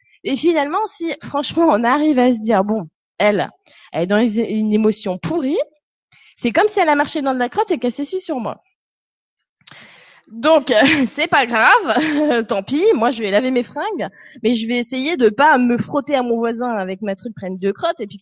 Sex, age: female, 20-39